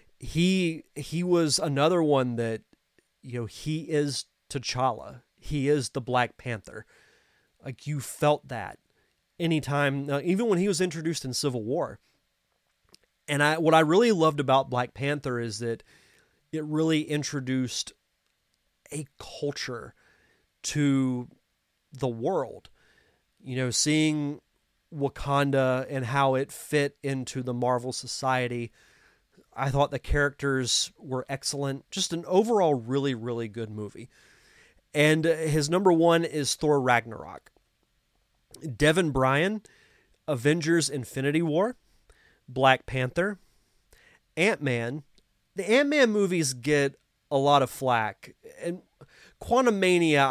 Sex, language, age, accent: male, English, 30-49, American